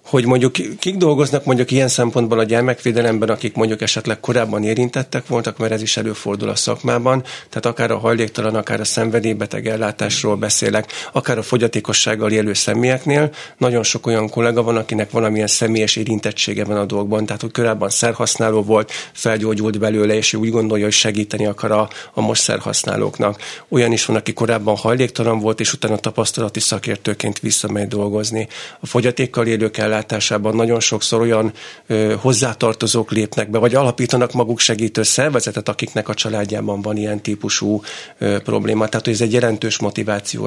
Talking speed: 155 wpm